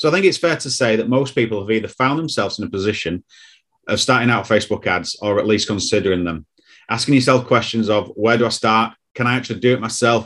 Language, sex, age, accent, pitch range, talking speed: English, male, 30-49, British, 105-130 Hz, 240 wpm